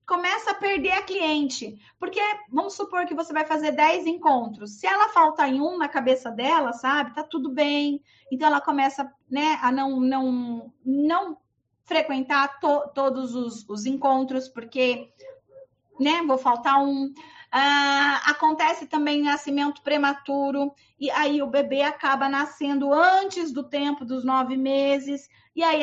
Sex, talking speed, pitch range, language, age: female, 145 wpm, 265-320 Hz, Portuguese, 20-39